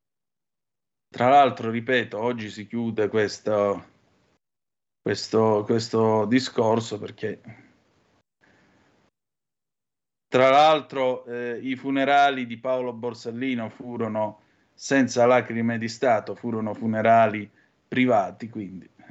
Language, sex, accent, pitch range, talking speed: Italian, male, native, 110-135 Hz, 90 wpm